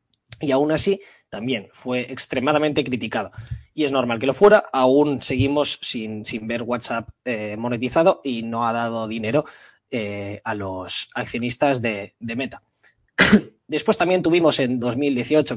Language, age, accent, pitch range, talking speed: Spanish, 20-39, Spanish, 115-150 Hz, 145 wpm